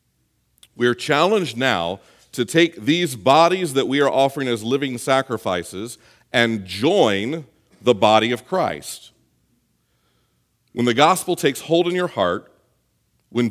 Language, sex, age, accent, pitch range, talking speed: English, male, 40-59, American, 95-145 Hz, 135 wpm